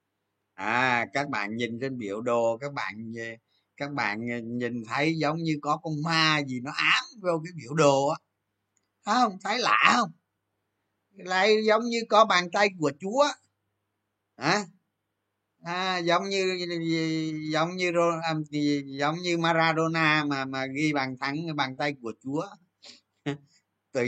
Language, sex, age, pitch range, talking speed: Vietnamese, male, 20-39, 105-150 Hz, 150 wpm